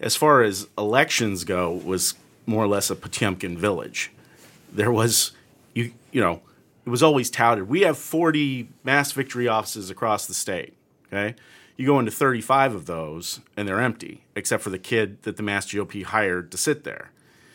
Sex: male